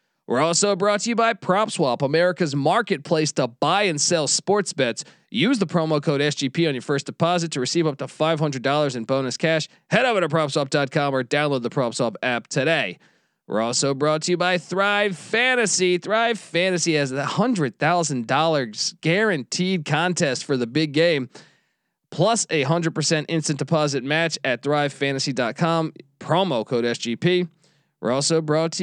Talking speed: 160 wpm